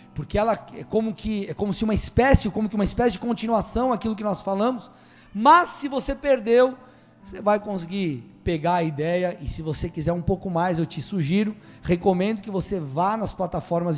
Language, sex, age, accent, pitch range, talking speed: Portuguese, male, 20-39, Brazilian, 170-245 Hz, 195 wpm